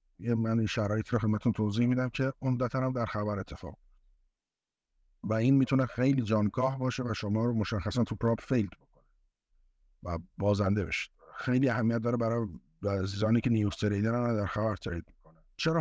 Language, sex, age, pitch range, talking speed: Persian, male, 50-69, 100-125 Hz, 165 wpm